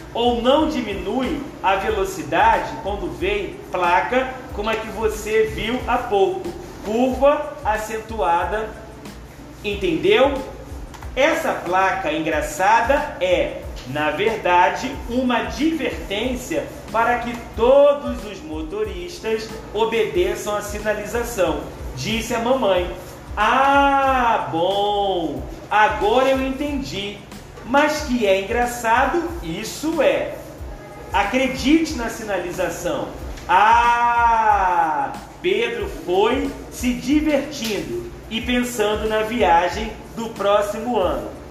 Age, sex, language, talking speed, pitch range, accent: 40-59, male, Portuguese, 90 wpm, 205-285 Hz, Brazilian